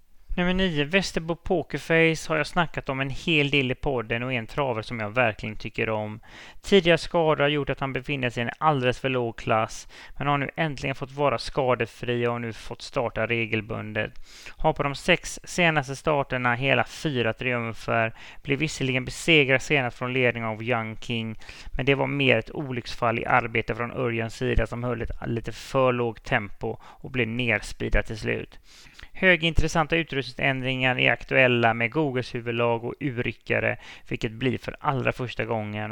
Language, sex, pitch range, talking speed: English, male, 115-140 Hz, 170 wpm